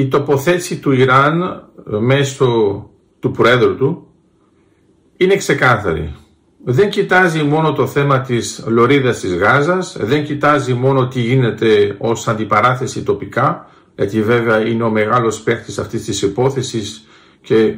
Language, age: Greek, 50-69